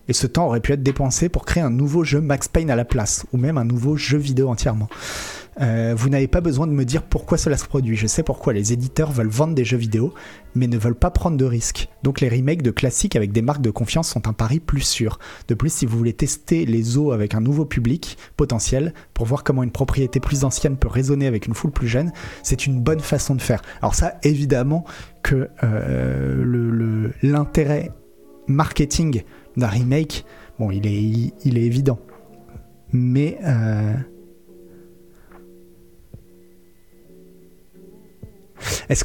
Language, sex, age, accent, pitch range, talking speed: French, male, 30-49, French, 115-145 Hz, 185 wpm